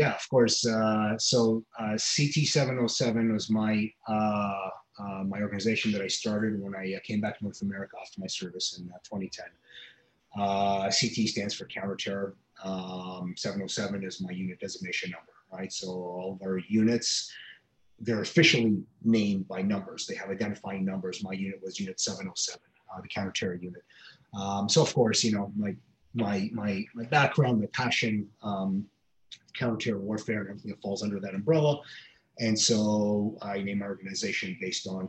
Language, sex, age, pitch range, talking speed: English, male, 30-49, 95-115 Hz, 165 wpm